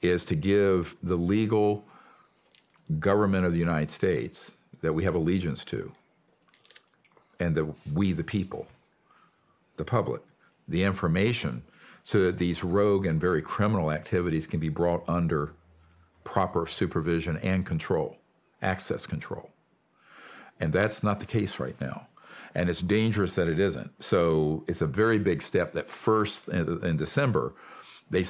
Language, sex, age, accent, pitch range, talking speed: English, male, 50-69, American, 80-95 Hz, 140 wpm